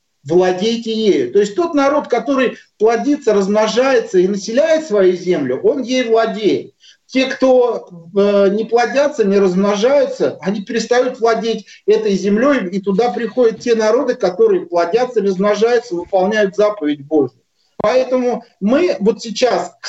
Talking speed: 130 wpm